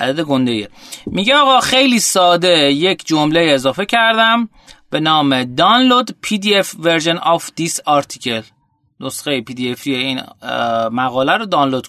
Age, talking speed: 30-49, 110 wpm